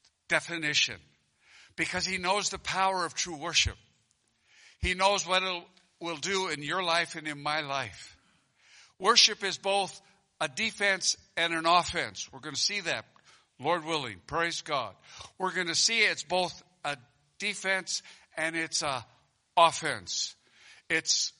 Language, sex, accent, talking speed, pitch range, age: English, male, American, 145 wpm, 135-175 Hz, 60-79